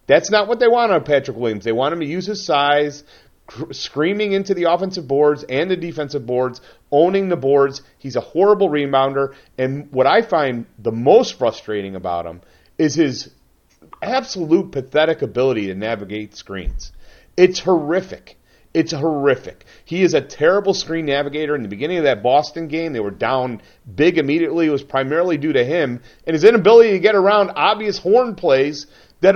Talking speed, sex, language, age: 175 wpm, male, English, 40-59